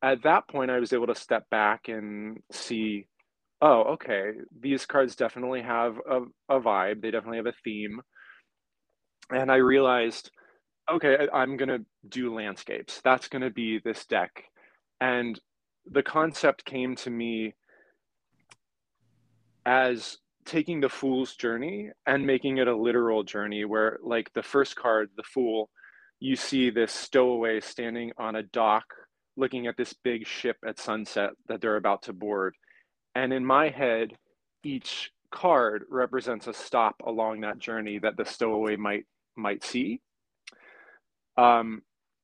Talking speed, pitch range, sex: 145 wpm, 110-135 Hz, male